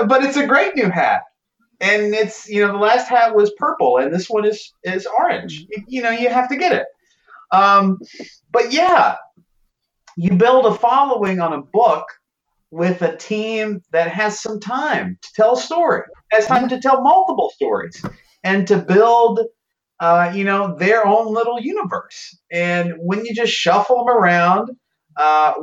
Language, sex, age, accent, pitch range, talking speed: English, male, 40-59, American, 170-235 Hz, 170 wpm